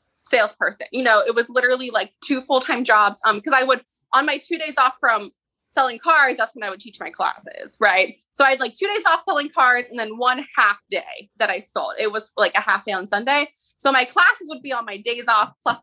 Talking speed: 245 wpm